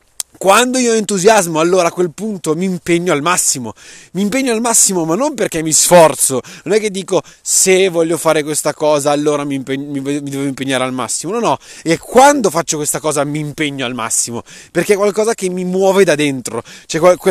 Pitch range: 155-205 Hz